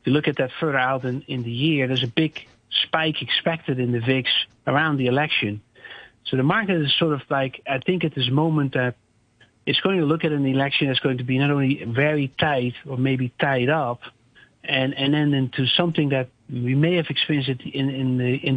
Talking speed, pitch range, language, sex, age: 225 wpm, 125-150 Hz, English, male, 60-79